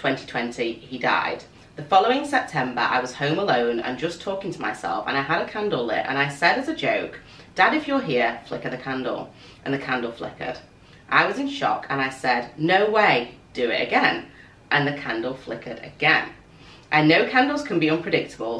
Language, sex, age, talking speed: English, female, 30-49, 195 wpm